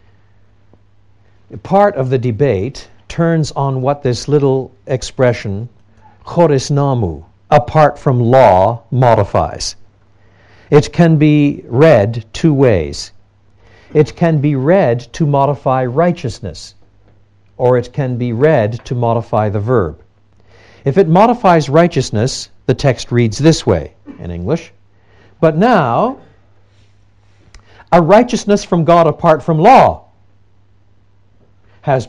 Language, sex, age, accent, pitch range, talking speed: Danish, male, 60-79, American, 100-150 Hz, 110 wpm